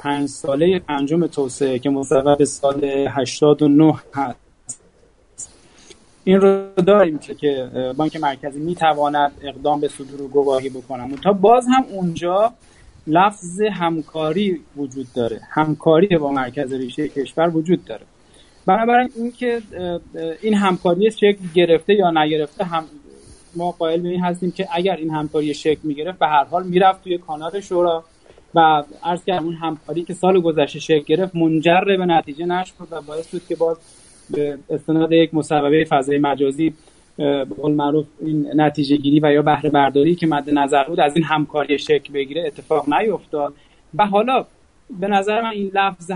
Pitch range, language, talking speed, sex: 145-185 Hz, Persian, 155 wpm, male